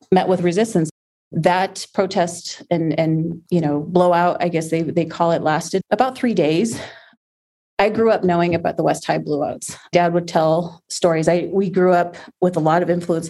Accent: American